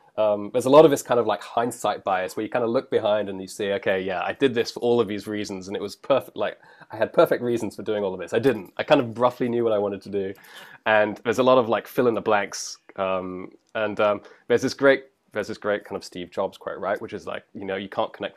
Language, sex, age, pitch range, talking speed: English, male, 20-39, 95-120 Hz, 290 wpm